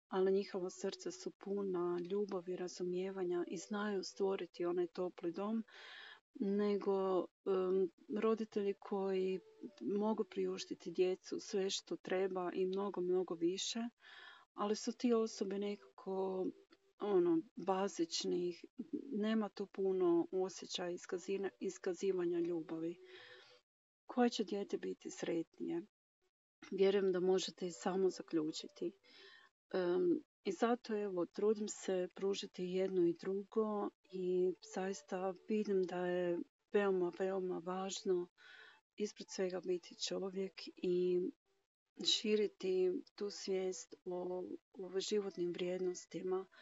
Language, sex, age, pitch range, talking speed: Croatian, female, 40-59, 185-225 Hz, 105 wpm